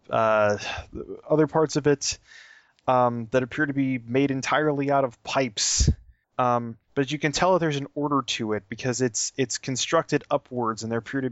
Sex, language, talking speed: male, English, 185 wpm